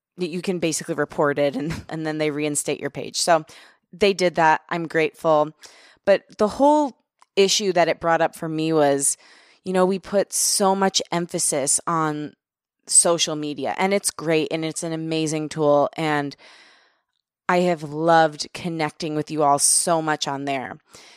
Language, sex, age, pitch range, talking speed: English, female, 20-39, 155-190 Hz, 165 wpm